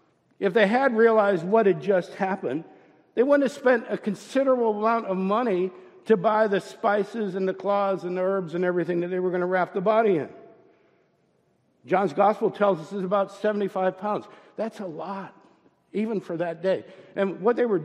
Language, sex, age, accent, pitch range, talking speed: English, male, 60-79, American, 195-245 Hz, 190 wpm